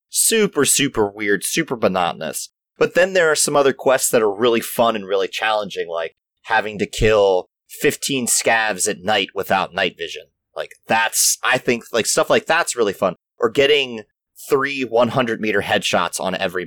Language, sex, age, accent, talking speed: English, male, 30-49, American, 175 wpm